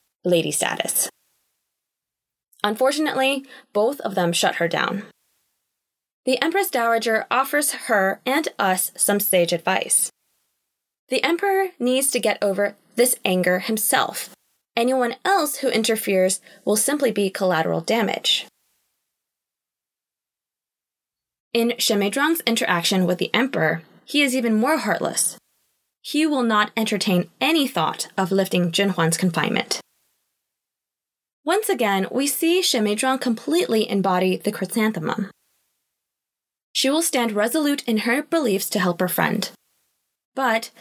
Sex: female